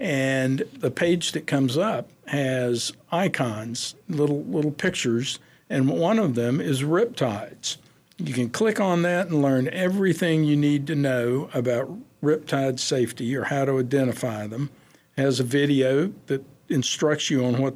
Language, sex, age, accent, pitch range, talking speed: English, male, 60-79, American, 125-155 Hz, 155 wpm